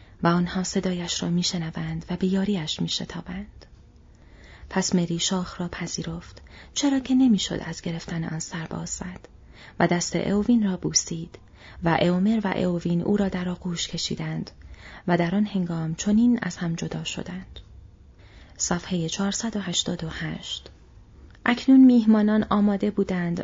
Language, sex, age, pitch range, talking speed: Persian, female, 30-49, 170-210 Hz, 135 wpm